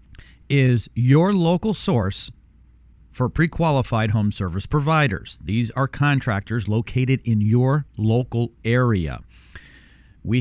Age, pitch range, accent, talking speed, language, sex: 40-59, 95-140 Hz, American, 105 wpm, English, male